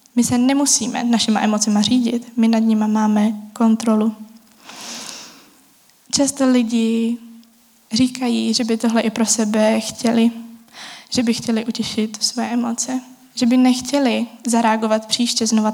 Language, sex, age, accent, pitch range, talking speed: Czech, female, 20-39, native, 220-245 Hz, 125 wpm